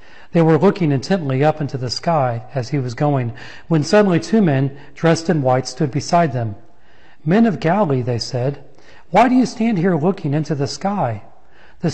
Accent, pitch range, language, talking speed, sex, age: American, 125-155 Hz, English, 185 wpm, male, 40-59